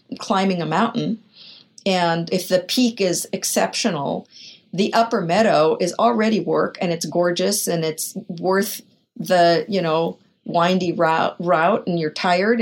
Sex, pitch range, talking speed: female, 175-235 Hz, 145 wpm